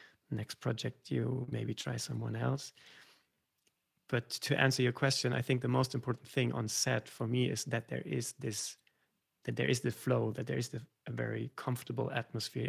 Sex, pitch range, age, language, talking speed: male, 115-130 Hz, 30-49, English, 185 wpm